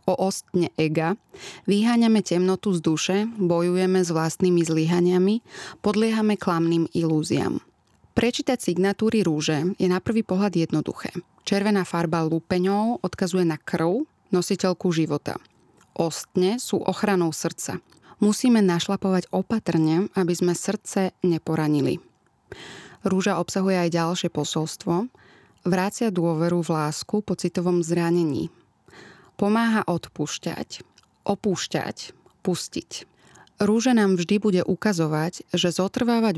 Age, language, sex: 20-39, Slovak, female